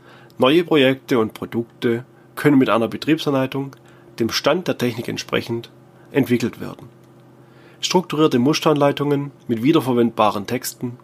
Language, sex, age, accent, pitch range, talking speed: German, male, 30-49, German, 115-145 Hz, 110 wpm